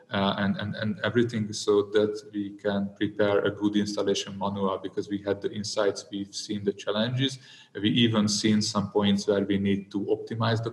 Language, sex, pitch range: English, male, 100-110 Hz